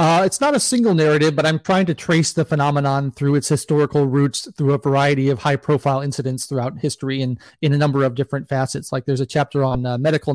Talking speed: 225 wpm